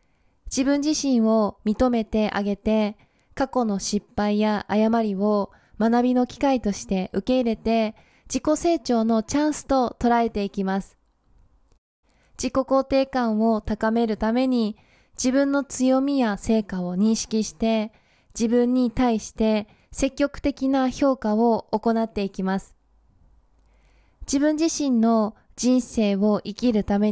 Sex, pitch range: female, 210-255 Hz